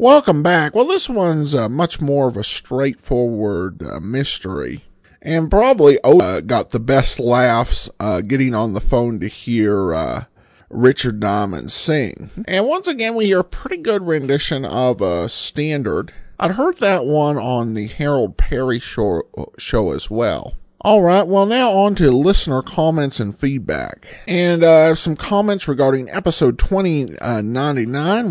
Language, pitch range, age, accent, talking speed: English, 115-165 Hz, 50-69, American, 155 wpm